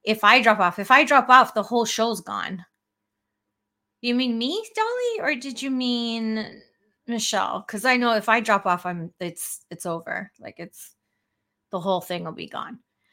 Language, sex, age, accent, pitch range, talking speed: English, female, 30-49, American, 185-255 Hz, 185 wpm